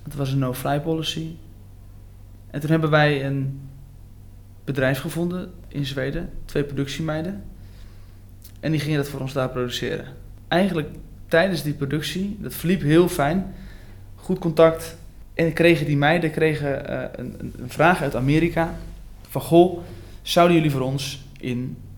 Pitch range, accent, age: 115-150 Hz, Dutch, 20-39